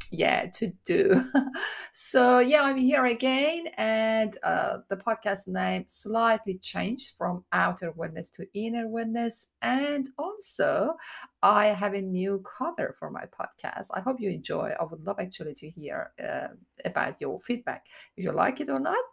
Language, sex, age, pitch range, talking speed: English, female, 30-49, 155-235 Hz, 160 wpm